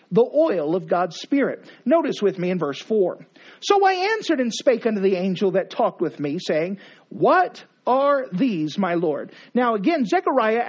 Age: 50-69